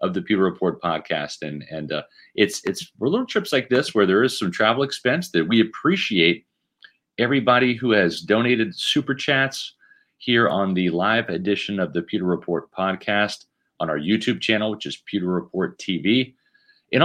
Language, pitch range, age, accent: English, 100-135 Hz, 40-59, American